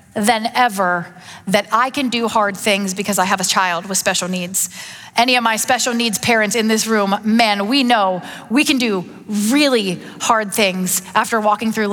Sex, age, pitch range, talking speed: female, 30-49, 210-260 Hz, 185 wpm